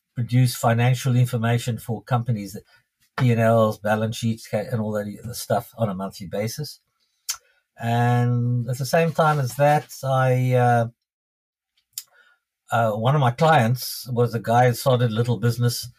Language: English